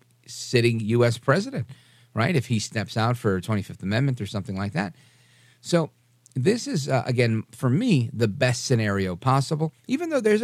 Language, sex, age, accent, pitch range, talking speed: English, male, 50-69, American, 110-140 Hz, 165 wpm